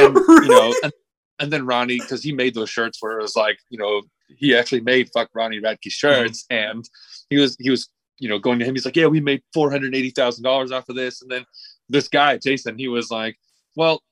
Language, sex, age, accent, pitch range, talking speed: English, male, 30-49, American, 115-160 Hz, 225 wpm